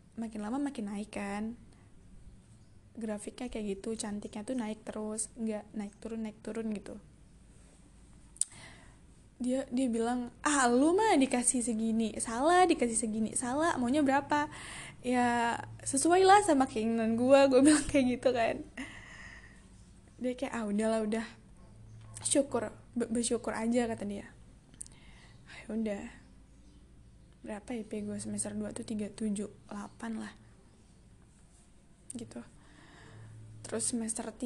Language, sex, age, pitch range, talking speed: Indonesian, female, 10-29, 165-240 Hz, 115 wpm